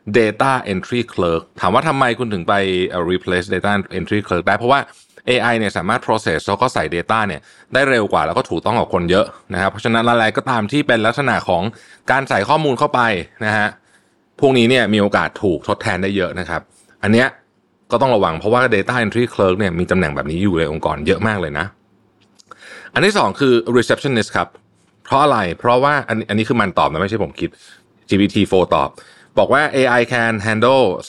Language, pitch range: Thai, 90-120 Hz